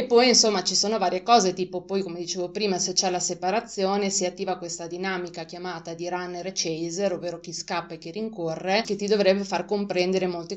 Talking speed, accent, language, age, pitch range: 205 wpm, native, Italian, 20-39, 170-205 Hz